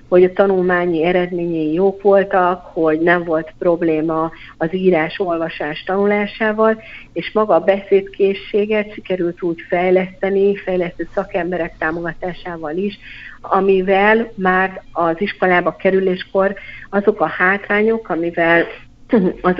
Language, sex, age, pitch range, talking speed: Hungarian, female, 50-69, 170-195 Hz, 105 wpm